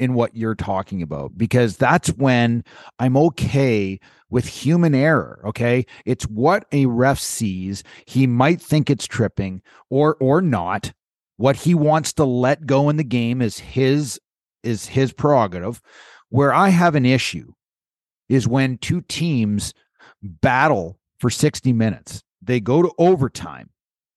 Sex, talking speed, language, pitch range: male, 145 wpm, English, 115-160 Hz